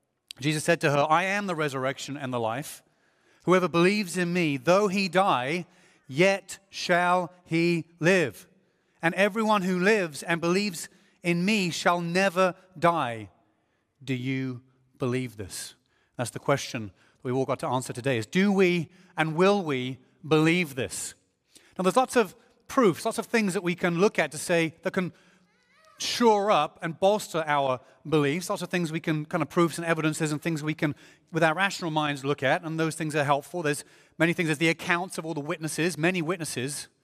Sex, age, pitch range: male, 30-49, 150-180 Hz